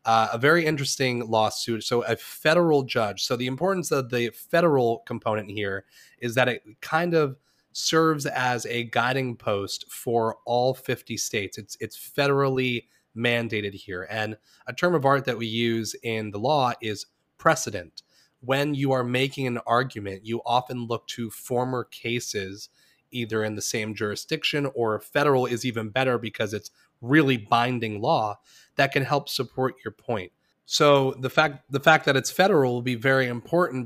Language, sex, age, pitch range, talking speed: English, male, 30-49, 115-135 Hz, 165 wpm